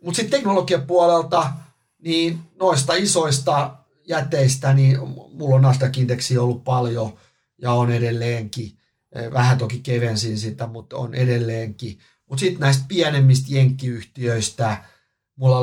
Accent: native